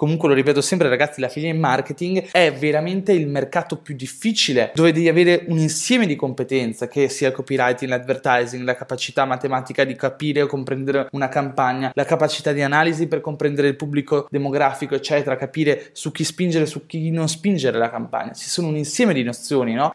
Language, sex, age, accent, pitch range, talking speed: Italian, male, 20-39, native, 110-150 Hz, 195 wpm